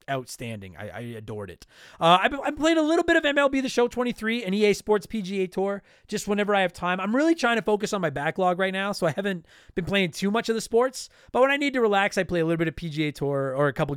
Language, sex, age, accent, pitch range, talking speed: English, male, 30-49, American, 165-225 Hz, 275 wpm